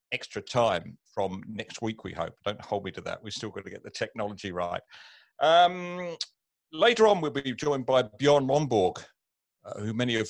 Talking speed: 190 wpm